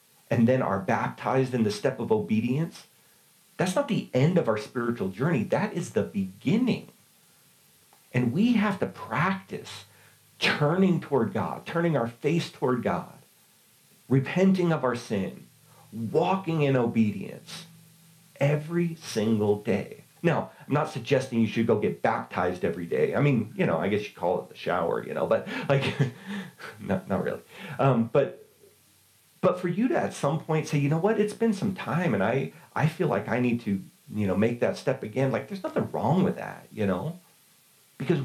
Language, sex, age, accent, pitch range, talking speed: English, male, 40-59, American, 115-170 Hz, 175 wpm